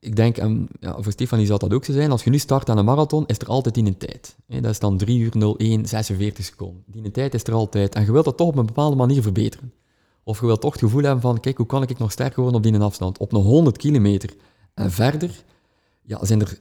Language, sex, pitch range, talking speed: English, male, 100-130 Hz, 260 wpm